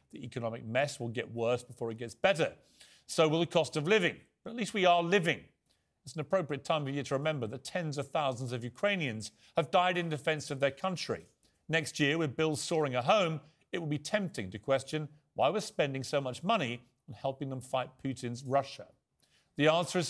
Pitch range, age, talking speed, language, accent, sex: 130-165 Hz, 40-59, 210 wpm, English, British, male